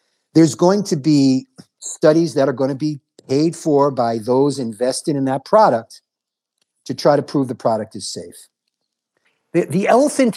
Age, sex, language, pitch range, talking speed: 50-69, male, English, 135-190 Hz, 170 wpm